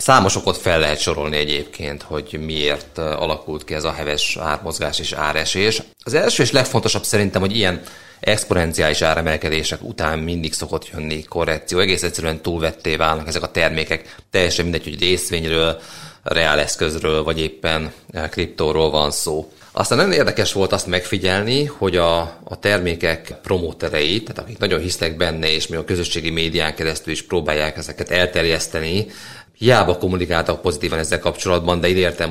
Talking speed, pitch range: 150 wpm, 80-90 Hz